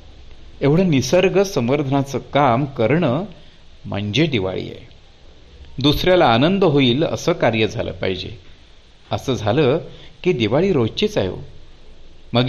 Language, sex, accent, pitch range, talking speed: Marathi, male, native, 105-150 Hz, 105 wpm